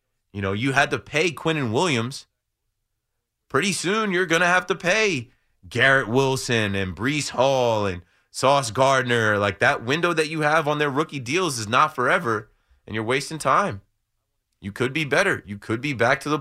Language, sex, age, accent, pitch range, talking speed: English, male, 20-39, American, 110-135 Hz, 190 wpm